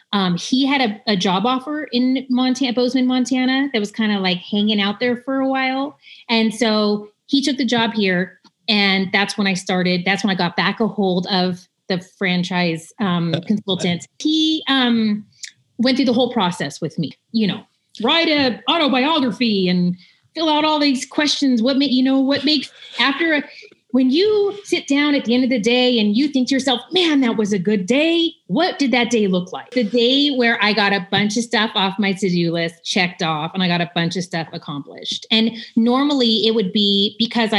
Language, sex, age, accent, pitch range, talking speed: English, female, 30-49, American, 190-260 Hz, 210 wpm